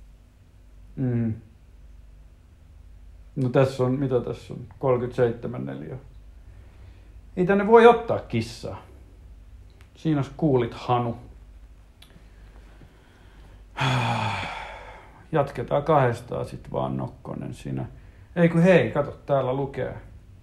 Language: Finnish